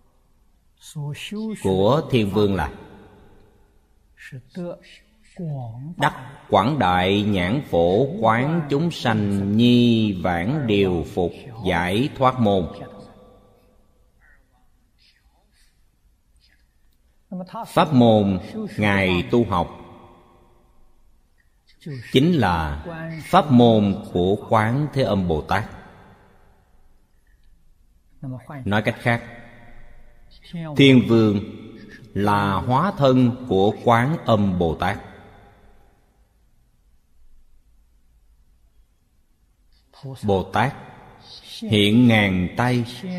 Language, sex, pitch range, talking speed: Vietnamese, male, 90-130 Hz, 70 wpm